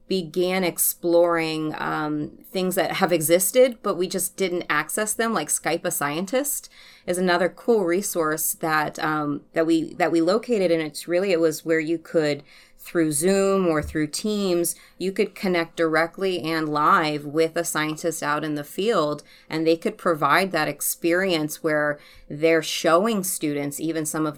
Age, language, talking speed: 30-49, English, 165 wpm